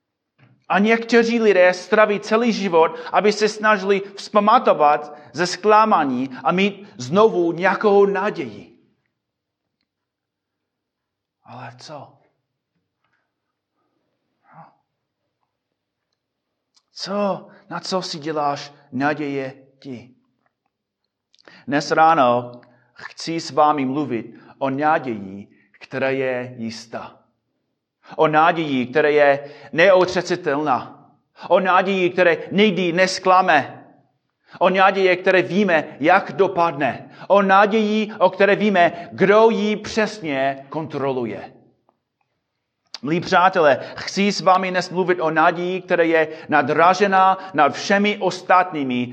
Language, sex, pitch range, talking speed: Czech, male, 145-195 Hz, 95 wpm